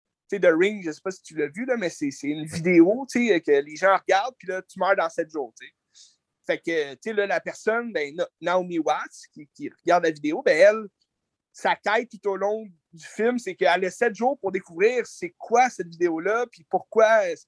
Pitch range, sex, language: 175-240 Hz, male, French